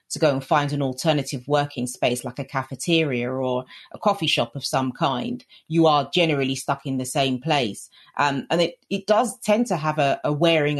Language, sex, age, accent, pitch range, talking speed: English, female, 40-59, British, 130-165 Hz, 205 wpm